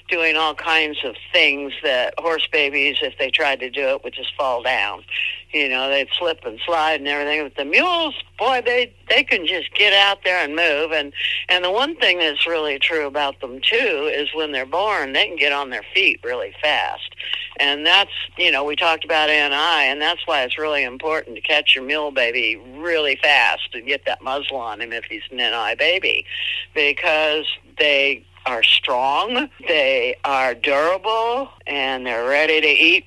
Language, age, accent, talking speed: English, 50-69, American, 190 wpm